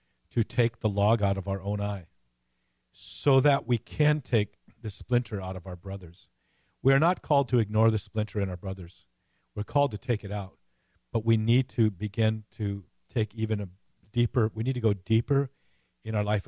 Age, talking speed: 50-69, 200 wpm